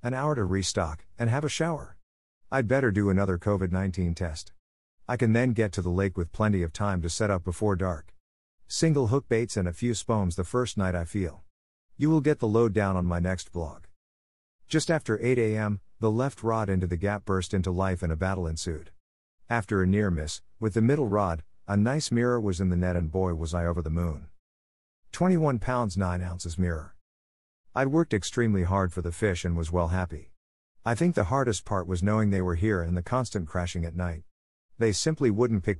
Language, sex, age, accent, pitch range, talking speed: English, male, 50-69, American, 85-115 Hz, 210 wpm